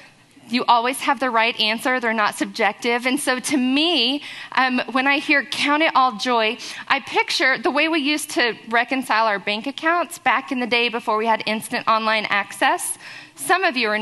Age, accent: 40-59, American